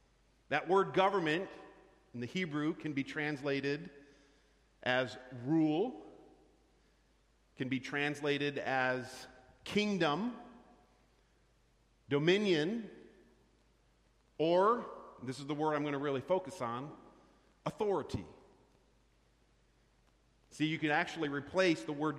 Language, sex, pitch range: English, male, 135-180 Hz